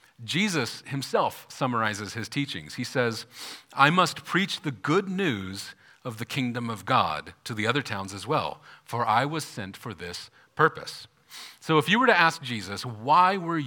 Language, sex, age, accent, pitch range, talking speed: English, male, 40-59, American, 120-165 Hz, 175 wpm